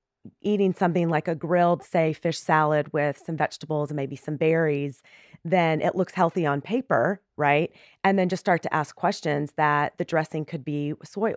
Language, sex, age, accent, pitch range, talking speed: English, female, 30-49, American, 155-190 Hz, 185 wpm